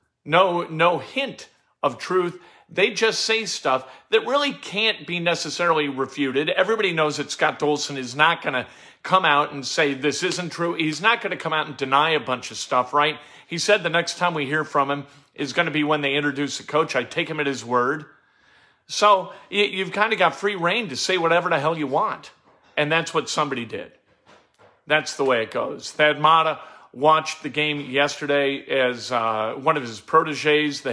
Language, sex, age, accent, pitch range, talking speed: English, male, 40-59, American, 130-165 Hz, 205 wpm